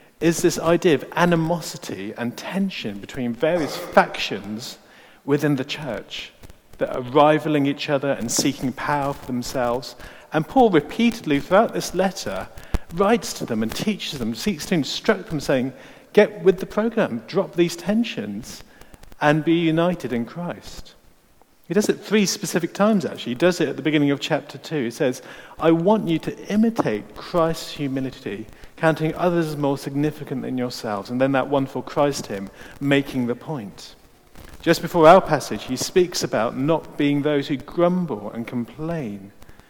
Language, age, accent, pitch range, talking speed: English, 40-59, British, 125-175 Hz, 165 wpm